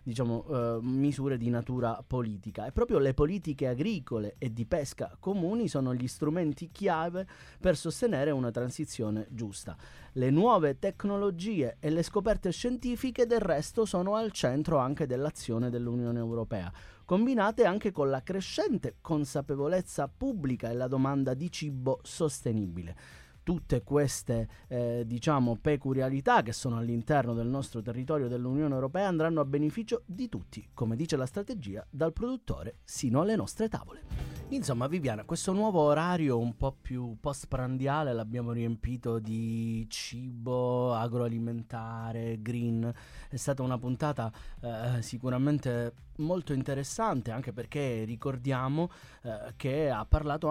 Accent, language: native, Italian